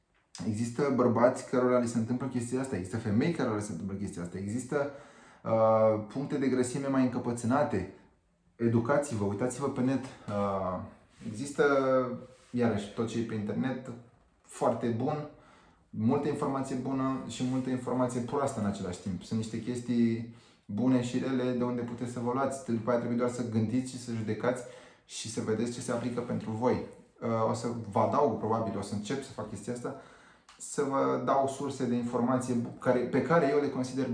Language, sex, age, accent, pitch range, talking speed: Romanian, male, 20-39, native, 110-130 Hz, 175 wpm